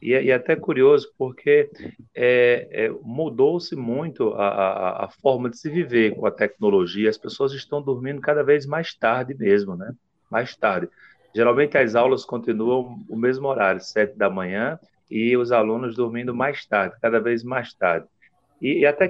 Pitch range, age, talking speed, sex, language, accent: 115-160 Hz, 40-59, 170 wpm, male, Portuguese, Brazilian